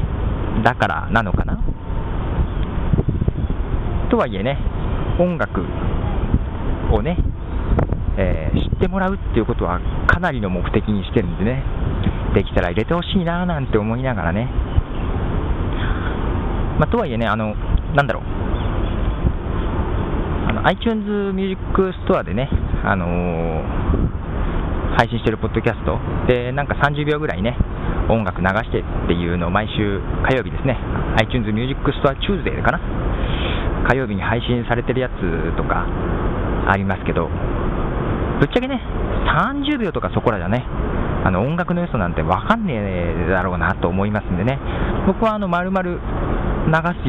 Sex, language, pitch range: male, Japanese, 85-120 Hz